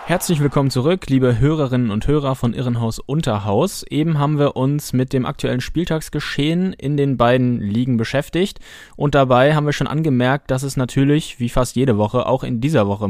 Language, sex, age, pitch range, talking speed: German, male, 20-39, 115-145 Hz, 185 wpm